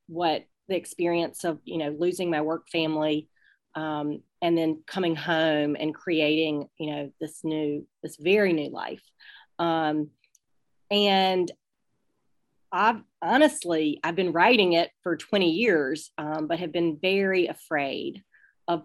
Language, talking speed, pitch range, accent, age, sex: English, 135 wpm, 160-185 Hz, American, 40-59, female